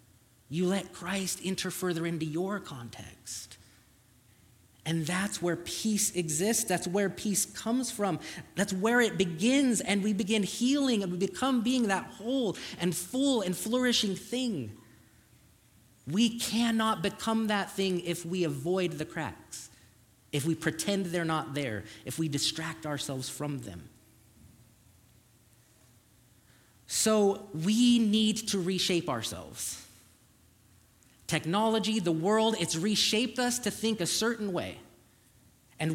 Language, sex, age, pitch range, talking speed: English, male, 30-49, 120-200 Hz, 130 wpm